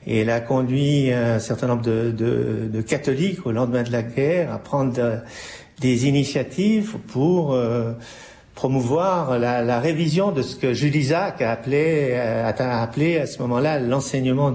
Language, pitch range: French, 120-150 Hz